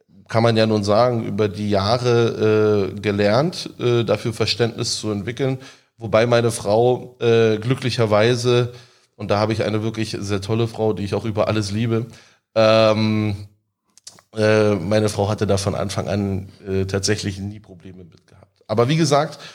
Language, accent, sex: German, German, male